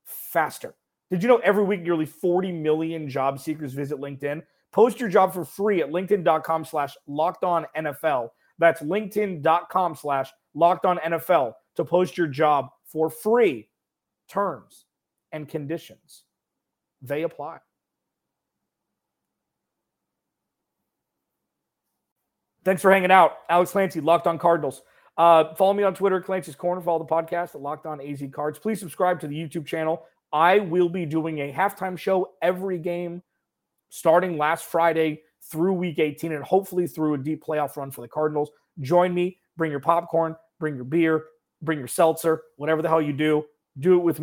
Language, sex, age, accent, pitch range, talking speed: English, male, 30-49, American, 150-180 Hz, 155 wpm